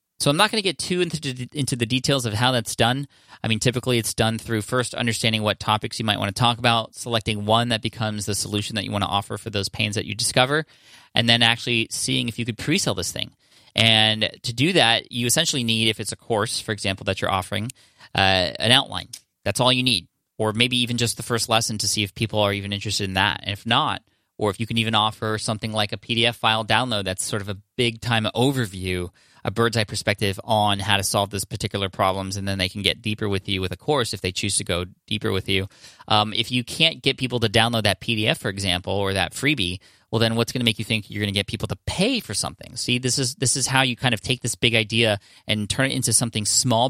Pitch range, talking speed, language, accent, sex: 100-120 Hz, 255 wpm, English, American, male